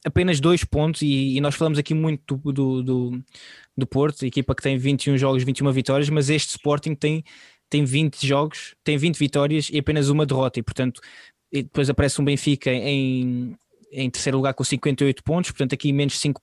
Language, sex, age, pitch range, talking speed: Portuguese, male, 20-39, 135-150 Hz, 185 wpm